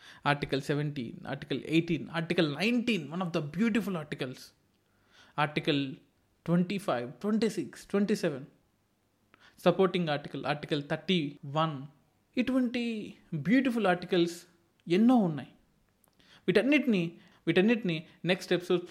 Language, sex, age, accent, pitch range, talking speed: Telugu, male, 20-39, native, 145-185 Hz, 90 wpm